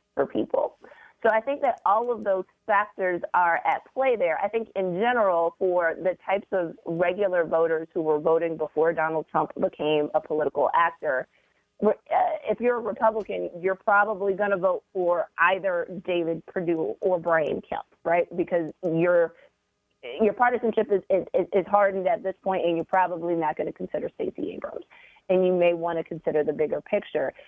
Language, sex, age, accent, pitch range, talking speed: English, female, 30-49, American, 165-210 Hz, 175 wpm